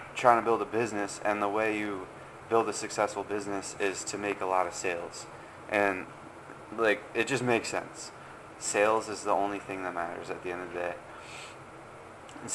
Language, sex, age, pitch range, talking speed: English, male, 20-39, 105-115 Hz, 190 wpm